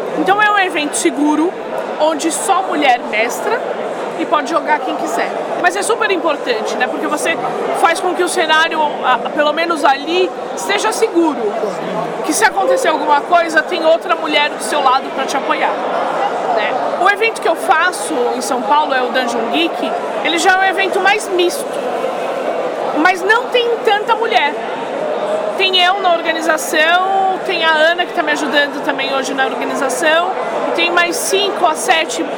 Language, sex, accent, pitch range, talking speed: Portuguese, female, Brazilian, 290-360 Hz, 170 wpm